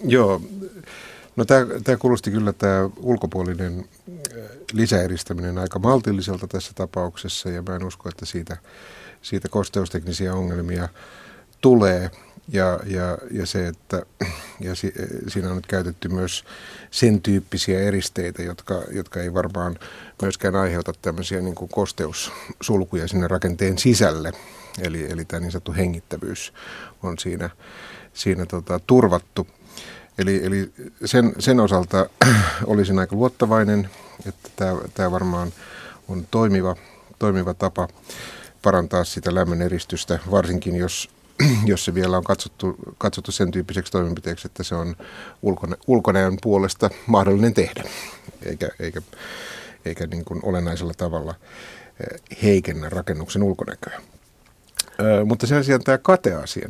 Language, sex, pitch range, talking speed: Finnish, male, 90-105 Hz, 120 wpm